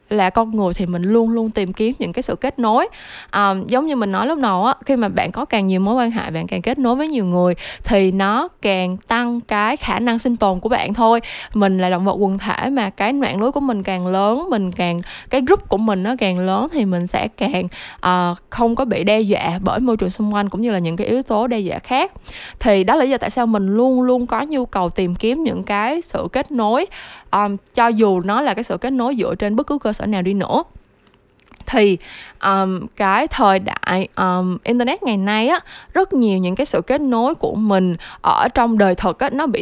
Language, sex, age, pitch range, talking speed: Vietnamese, female, 10-29, 190-255 Hz, 245 wpm